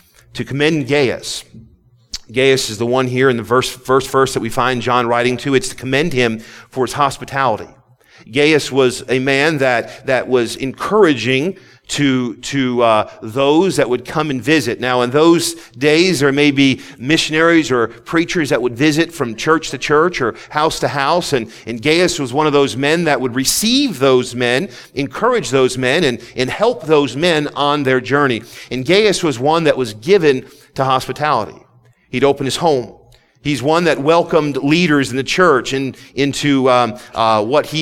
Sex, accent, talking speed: male, American, 180 wpm